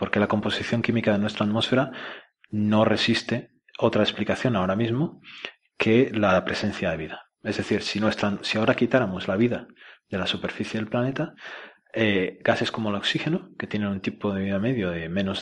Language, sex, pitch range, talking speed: Spanish, male, 105-125 Hz, 175 wpm